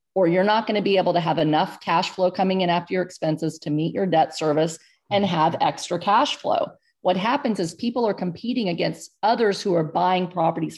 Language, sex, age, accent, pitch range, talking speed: English, female, 40-59, American, 155-195 Hz, 215 wpm